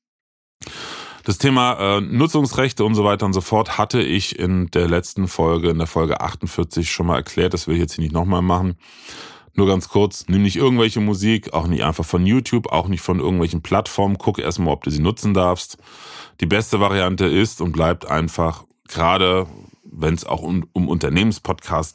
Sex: male